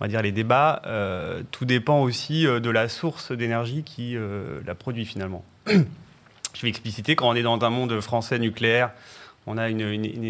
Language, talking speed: French, 190 wpm